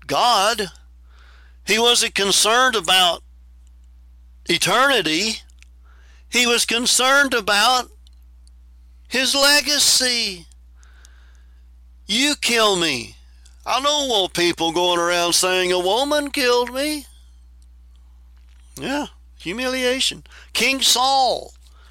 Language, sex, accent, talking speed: English, male, American, 80 wpm